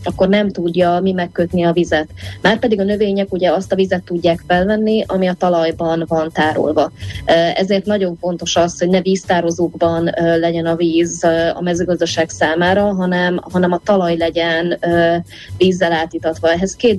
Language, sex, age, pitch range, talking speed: Hungarian, female, 20-39, 165-180 Hz, 155 wpm